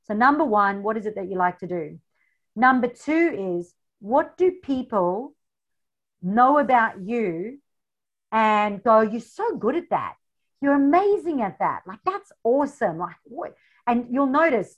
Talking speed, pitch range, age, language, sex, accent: 160 wpm, 185-245 Hz, 50-69, English, female, Australian